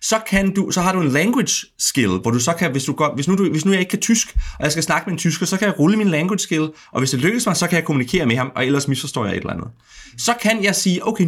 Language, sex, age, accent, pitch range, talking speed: Danish, male, 30-49, native, 120-190 Hz, 325 wpm